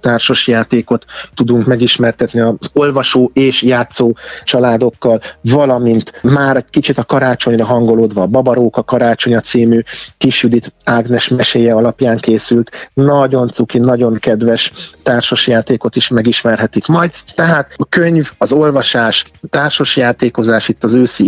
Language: Hungarian